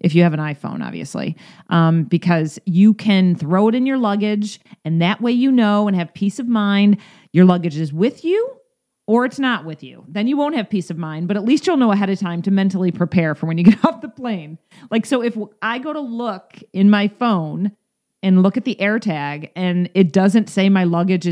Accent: American